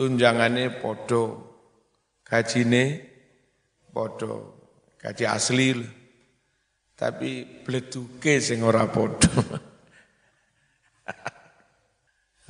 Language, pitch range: Indonesian, 115-130 Hz